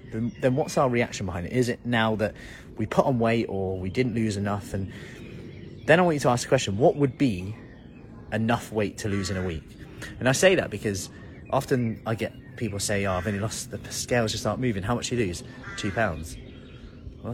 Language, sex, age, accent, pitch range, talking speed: English, male, 30-49, British, 95-125 Hz, 225 wpm